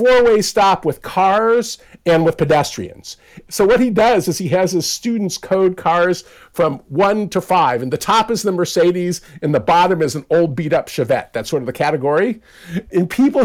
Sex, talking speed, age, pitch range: male, 195 wpm, 50-69, 150-195 Hz